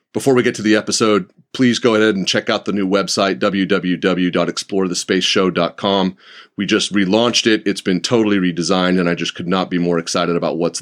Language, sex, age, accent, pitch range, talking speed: English, male, 30-49, American, 90-105 Hz, 190 wpm